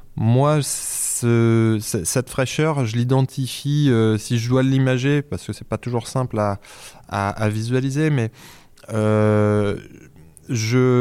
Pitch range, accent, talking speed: 105-130 Hz, French, 120 wpm